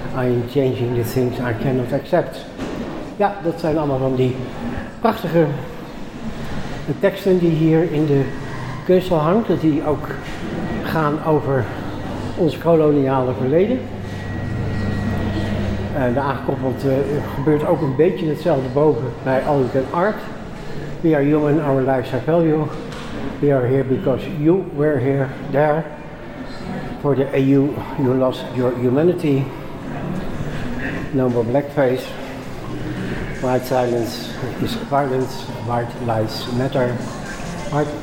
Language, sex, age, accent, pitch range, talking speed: English, male, 60-79, Dutch, 125-155 Hz, 125 wpm